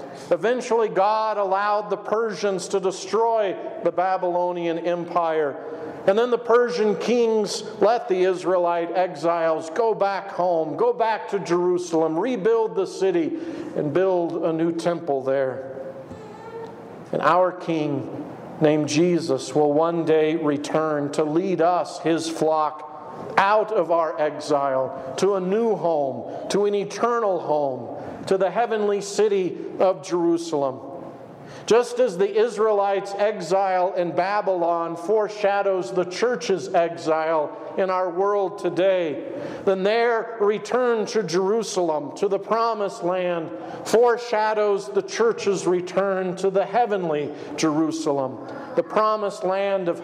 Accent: American